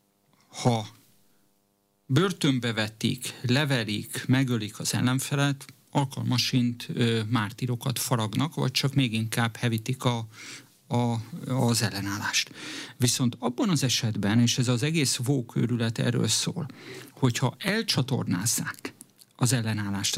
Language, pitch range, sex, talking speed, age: Hungarian, 120-140 Hz, male, 100 wpm, 50-69